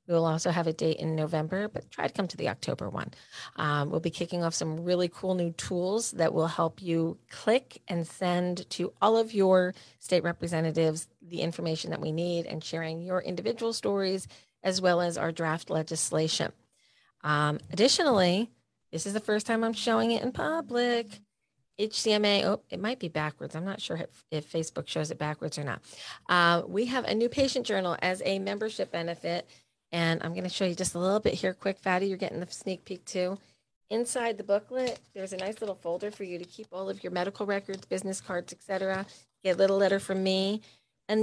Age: 40-59